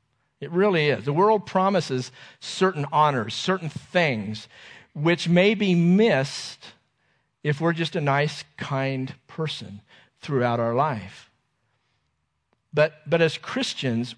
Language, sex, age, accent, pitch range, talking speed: English, male, 50-69, American, 130-170 Hz, 120 wpm